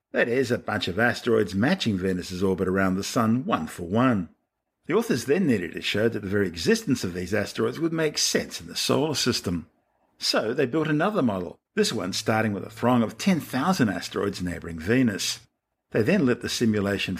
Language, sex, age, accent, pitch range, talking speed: English, male, 50-69, Australian, 95-125 Hz, 195 wpm